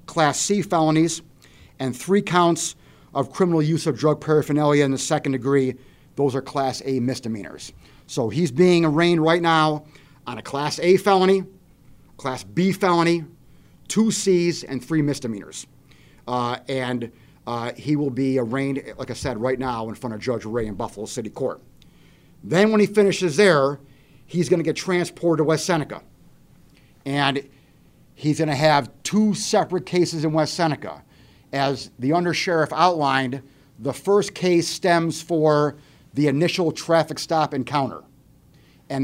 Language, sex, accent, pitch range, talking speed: English, male, American, 130-165 Hz, 155 wpm